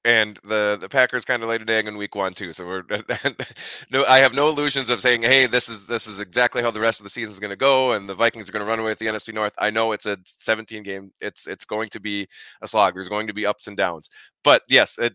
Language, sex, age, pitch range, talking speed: English, male, 30-49, 100-120 Hz, 290 wpm